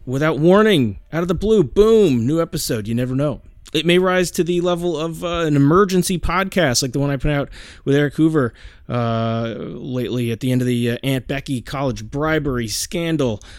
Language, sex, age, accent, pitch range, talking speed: English, male, 30-49, American, 130-160 Hz, 200 wpm